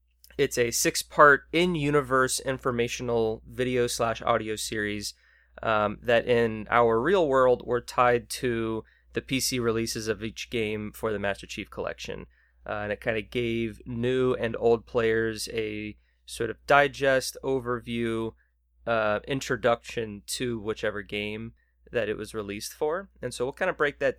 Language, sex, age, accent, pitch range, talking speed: English, male, 20-39, American, 110-125 Hz, 150 wpm